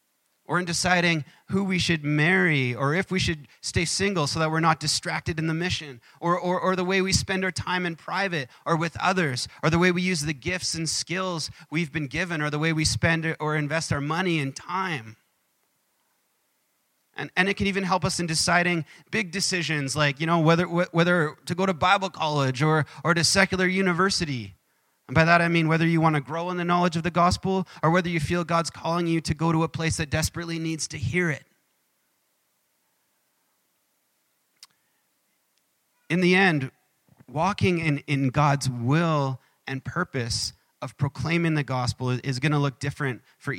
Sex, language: male, English